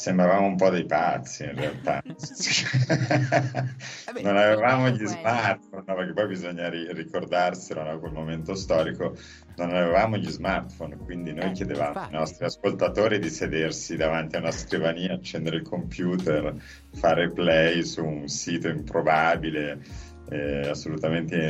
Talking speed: 125 wpm